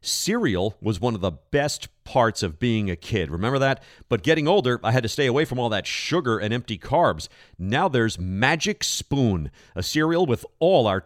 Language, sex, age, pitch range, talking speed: English, male, 40-59, 105-150 Hz, 200 wpm